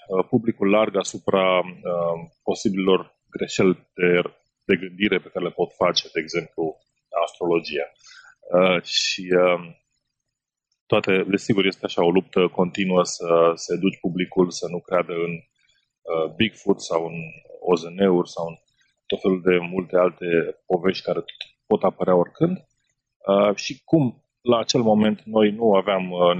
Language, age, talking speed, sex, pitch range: Romanian, 30-49, 145 wpm, male, 90-115 Hz